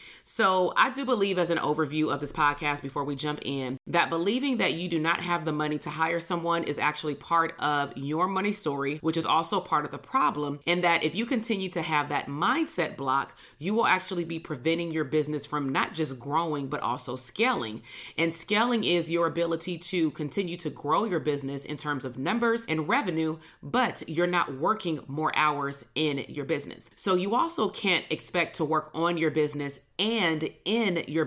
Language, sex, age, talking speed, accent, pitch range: English, female, 30-49, 200 wpm, American, 150-185 Hz